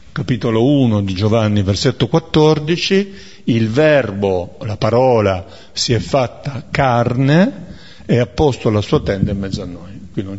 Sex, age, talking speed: male, 50-69, 150 wpm